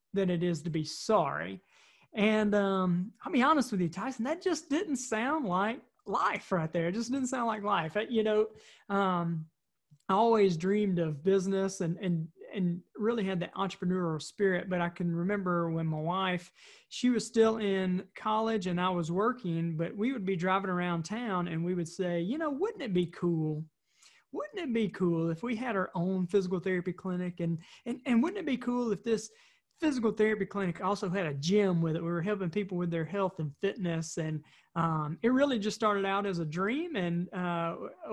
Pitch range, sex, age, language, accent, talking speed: 175-215 Hz, male, 30-49, English, American, 205 wpm